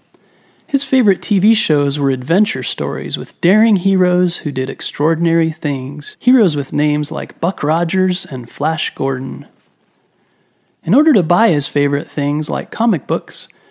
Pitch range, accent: 145-200 Hz, American